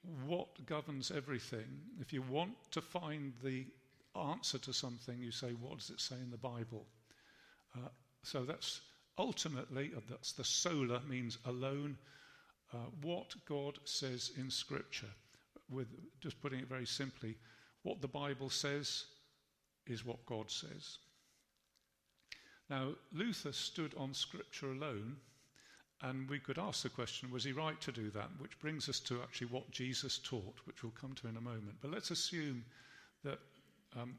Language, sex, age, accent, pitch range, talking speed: English, male, 50-69, British, 120-145 Hz, 155 wpm